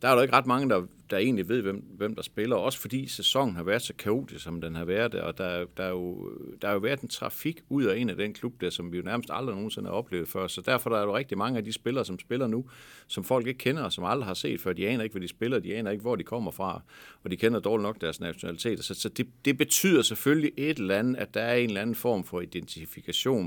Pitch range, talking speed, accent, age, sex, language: 95-130 Hz, 300 wpm, native, 60-79, male, Danish